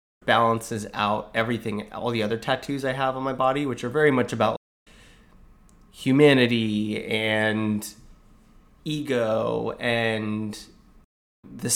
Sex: male